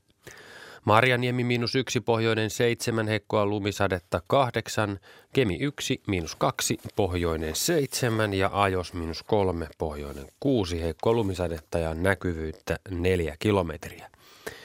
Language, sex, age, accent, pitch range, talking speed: Finnish, male, 30-49, native, 85-110 Hz, 100 wpm